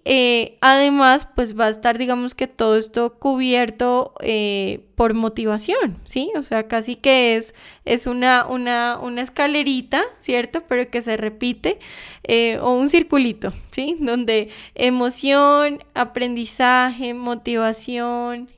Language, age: English, 10-29